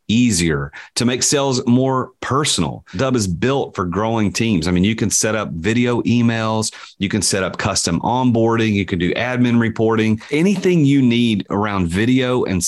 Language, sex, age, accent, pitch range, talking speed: English, male, 40-59, American, 90-120 Hz, 175 wpm